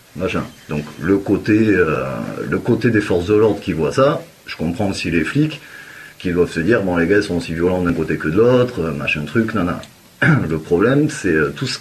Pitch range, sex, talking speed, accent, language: 80-115 Hz, male, 215 wpm, French, French